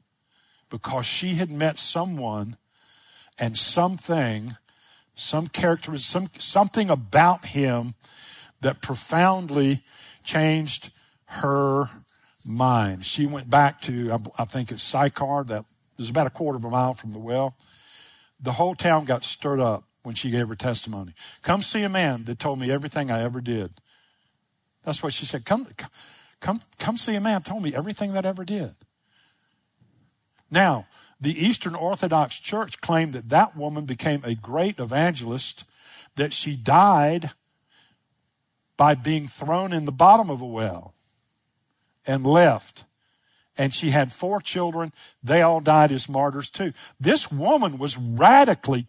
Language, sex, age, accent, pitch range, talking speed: English, male, 50-69, American, 125-170 Hz, 145 wpm